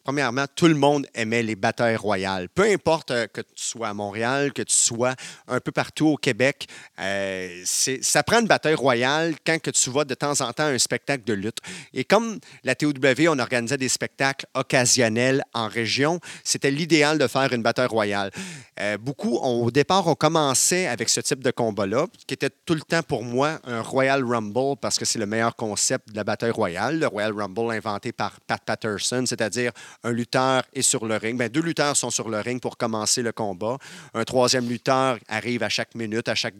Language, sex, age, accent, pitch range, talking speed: French, male, 30-49, Canadian, 115-145 Hz, 210 wpm